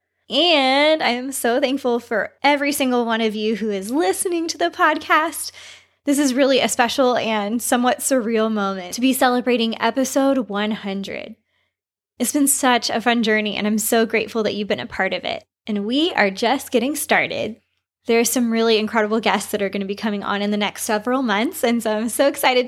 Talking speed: 205 wpm